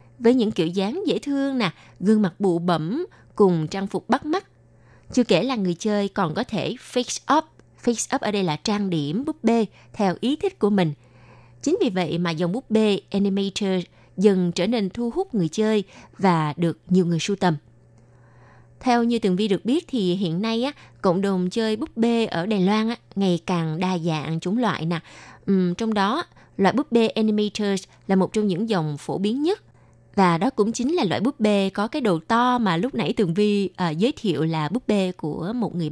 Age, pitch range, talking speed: 20-39, 175-230 Hz, 205 wpm